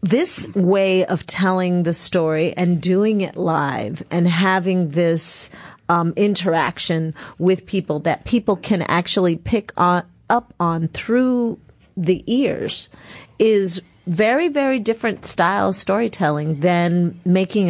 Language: English